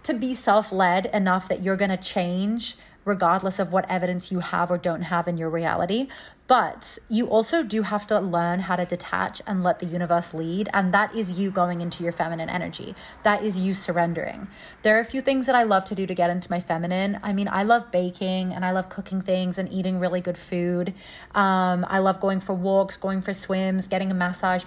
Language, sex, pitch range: English, female, 180-210 Hz